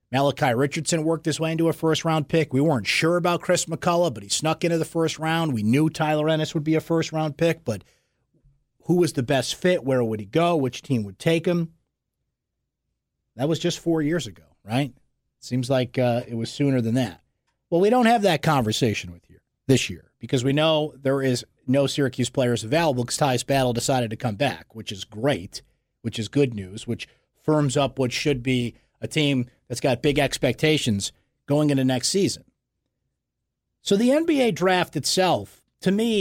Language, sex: English, male